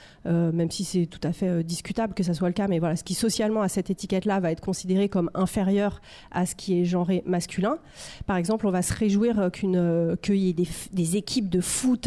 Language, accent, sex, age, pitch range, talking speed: French, French, female, 30-49, 185-220 Hz, 255 wpm